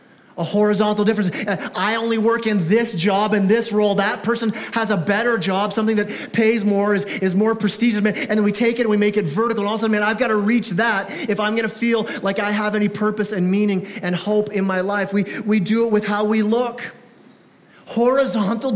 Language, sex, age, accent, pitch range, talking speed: English, male, 30-49, American, 205-245 Hz, 225 wpm